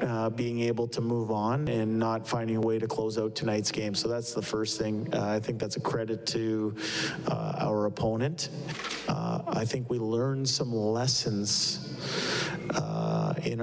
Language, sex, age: English, male, 40-59